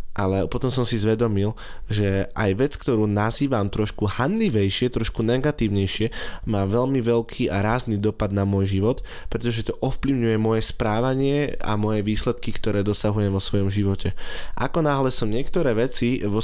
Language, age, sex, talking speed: Slovak, 20-39, male, 155 wpm